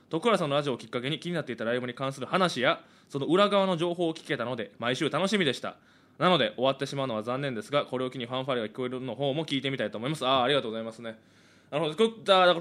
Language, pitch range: Japanese, 110-160 Hz